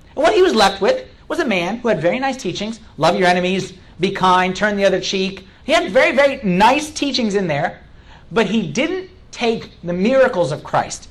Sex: male